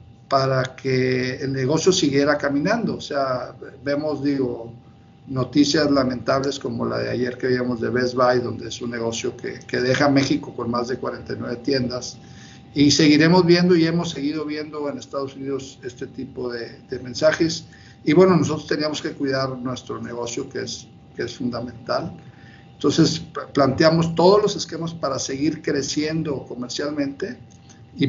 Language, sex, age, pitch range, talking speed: Spanish, male, 50-69, 130-150 Hz, 155 wpm